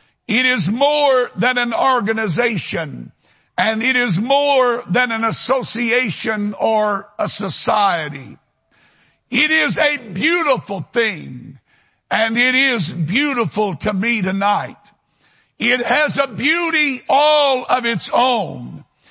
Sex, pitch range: male, 195-260 Hz